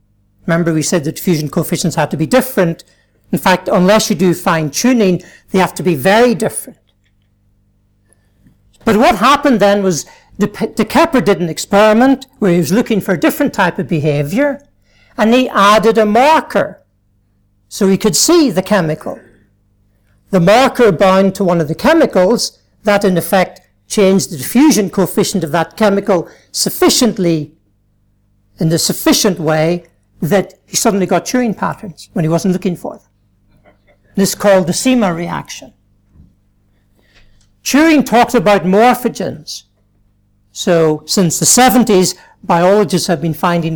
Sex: male